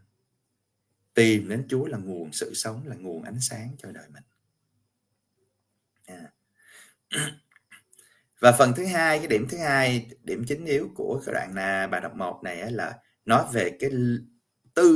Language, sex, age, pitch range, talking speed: Vietnamese, male, 30-49, 105-130 Hz, 150 wpm